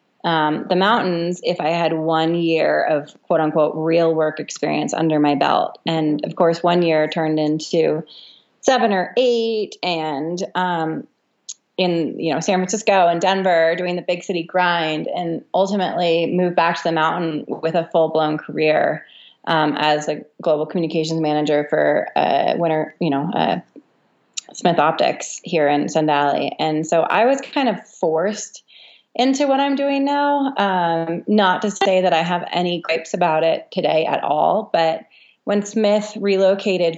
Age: 20-39